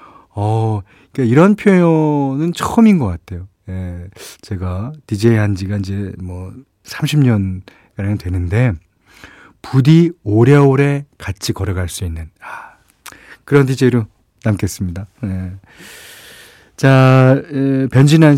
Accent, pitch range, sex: native, 100-135 Hz, male